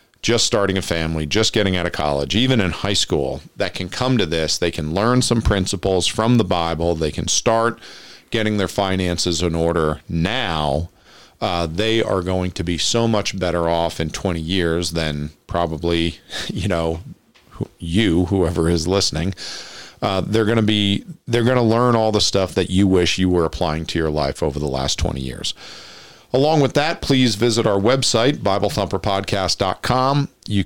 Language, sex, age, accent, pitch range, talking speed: English, male, 40-59, American, 85-110 Hz, 180 wpm